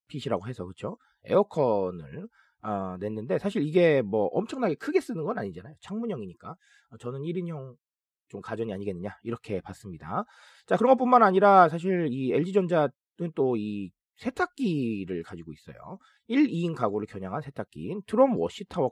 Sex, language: male, Korean